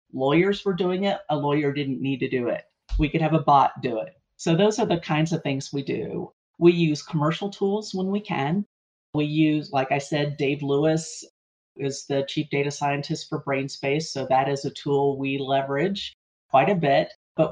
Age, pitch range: 50-69, 135-160 Hz